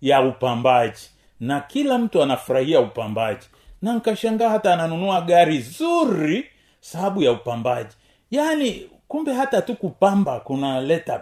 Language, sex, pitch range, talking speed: Swahili, male, 145-225 Hz, 120 wpm